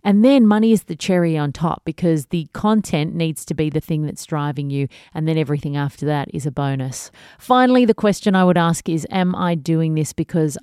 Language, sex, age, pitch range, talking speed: English, female, 30-49, 150-190 Hz, 220 wpm